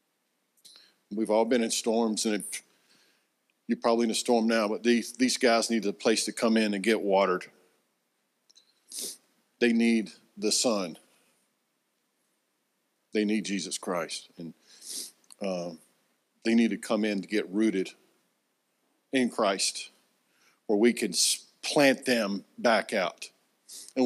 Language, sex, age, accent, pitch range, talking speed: English, male, 50-69, American, 110-140 Hz, 130 wpm